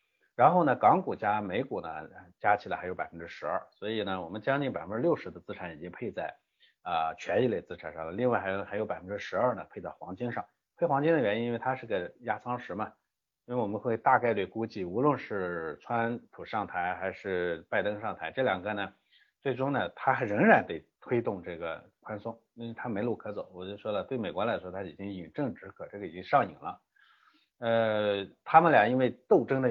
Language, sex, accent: Chinese, male, native